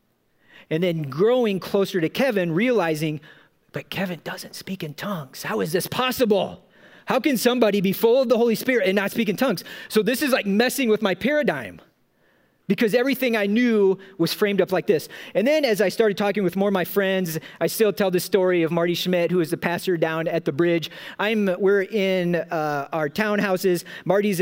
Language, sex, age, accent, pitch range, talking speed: English, male, 40-59, American, 170-215 Hz, 200 wpm